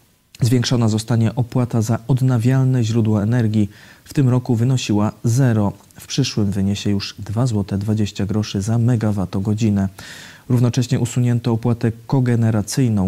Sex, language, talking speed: male, Polish, 110 wpm